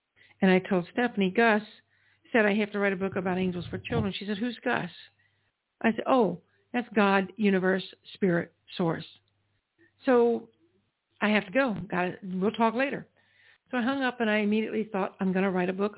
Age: 60-79